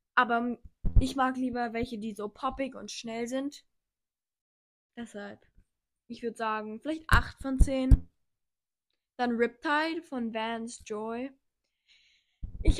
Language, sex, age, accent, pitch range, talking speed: German, female, 10-29, German, 225-265 Hz, 115 wpm